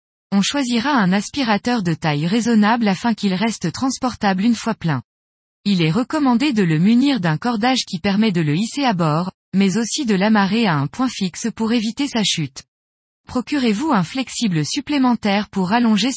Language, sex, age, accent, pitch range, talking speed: French, female, 20-39, French, 180-245 Hz, 175 wpm